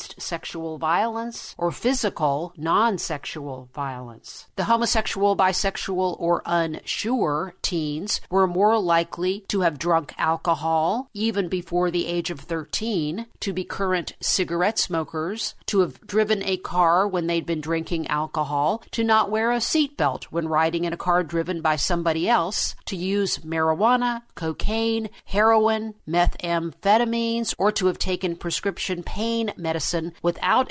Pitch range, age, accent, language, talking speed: 165-210 Hz, 50-69, American, English, 135 wpm